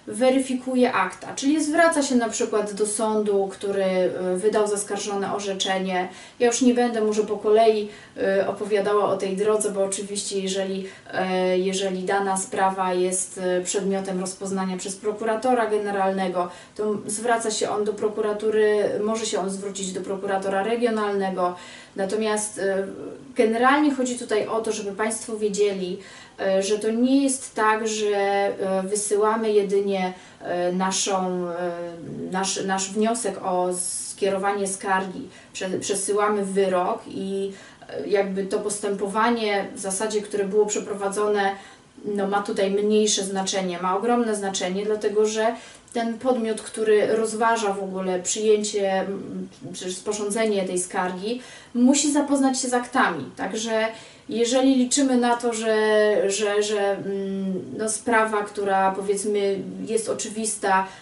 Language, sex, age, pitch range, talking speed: Polish, female, 30-49, 195-220 Hz, 120 wpm